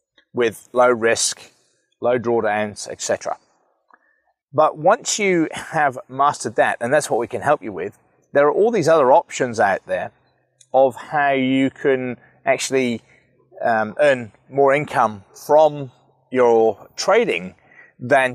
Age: 30-49